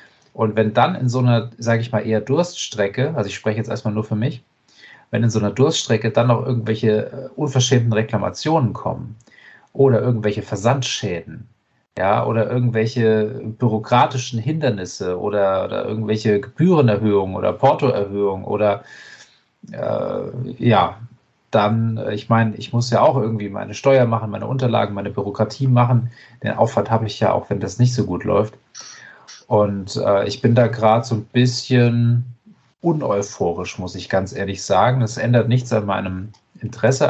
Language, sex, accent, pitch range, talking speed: German, male, German, 105-125 Hz, 155 wpm